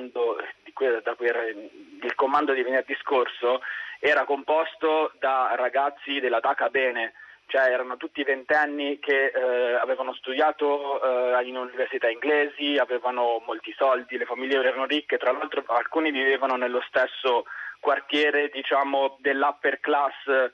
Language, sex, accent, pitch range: Italian, male, native, 130-150 Hz